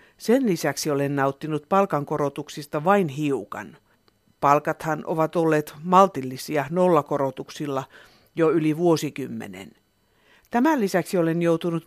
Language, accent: Finnish, native